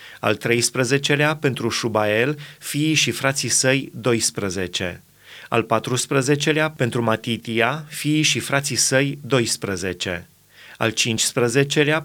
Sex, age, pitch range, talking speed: male, 30-49, 110-140 Hz, 100 wpm